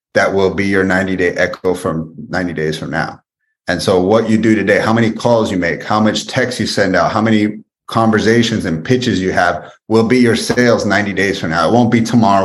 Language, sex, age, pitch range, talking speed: English, male, 30-49, 90-110 Hz, 225 wpm